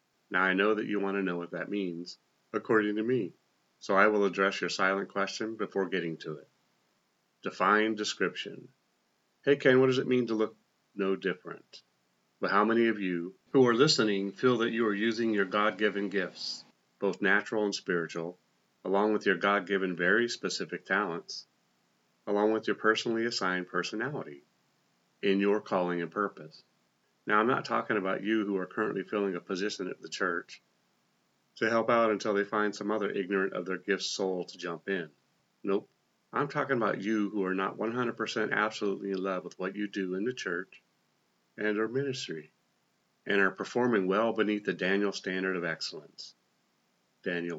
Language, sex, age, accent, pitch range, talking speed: English, male, 40-59, American, 95-110 Hz, 175 wpm